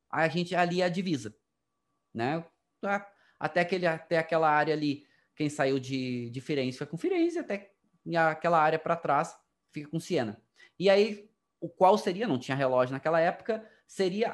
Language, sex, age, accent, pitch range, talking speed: Portuguese, male, 20-39, Brazilian, 160-225 Hz, 165 wpm